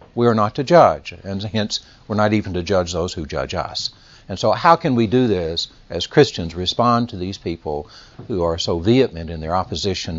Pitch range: 90-135 Hz